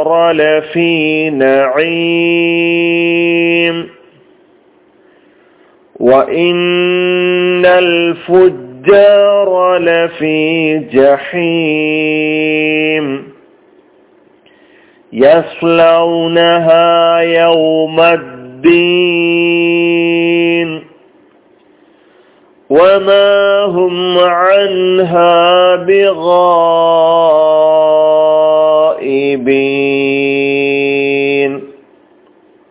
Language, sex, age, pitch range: Malayalam, male, 40-59, 155-180 Hz